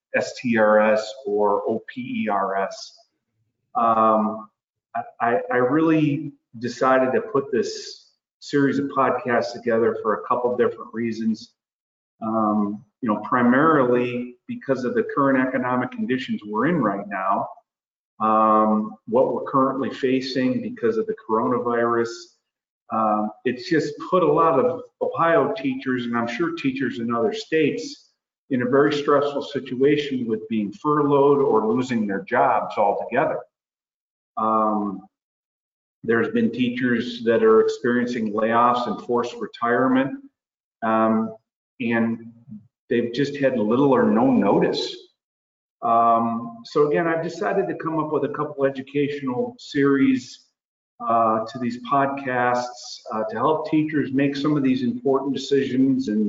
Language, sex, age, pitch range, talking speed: English, male, 40-59, 115-145 Hz, 130 wpm